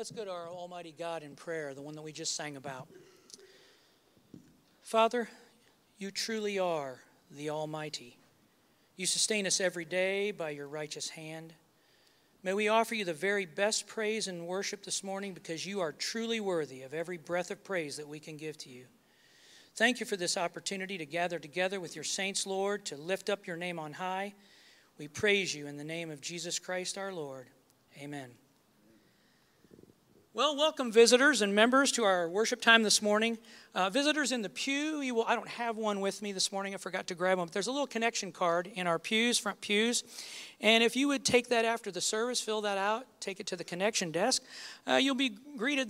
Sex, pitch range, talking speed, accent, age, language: male, 165-220 Hz, 200 wpm, American, 40-59, English